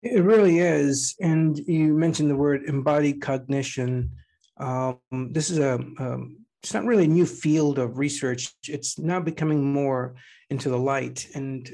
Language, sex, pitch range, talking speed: English, male, 130-160 Hz, 160 wpm